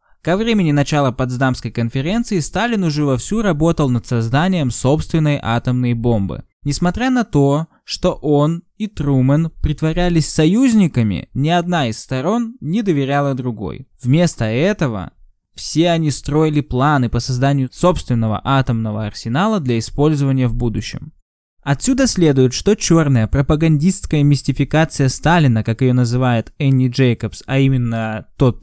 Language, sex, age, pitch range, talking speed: Russian, male, 20-39, 125-155 Hz, 125 wpm